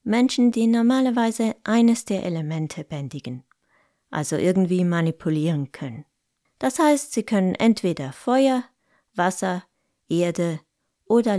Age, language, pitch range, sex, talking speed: 20-39, German, 160-240 Hz, female, 105 wpm